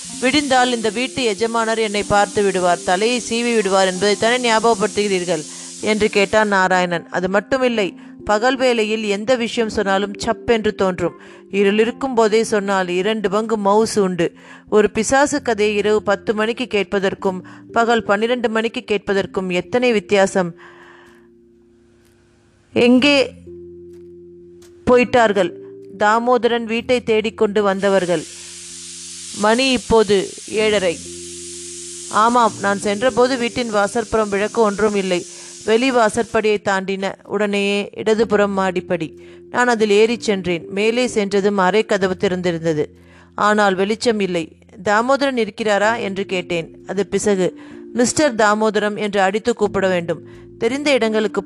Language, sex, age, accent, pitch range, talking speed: Tamil, female, 30-49, native, 185-225 Hz, 110 wpm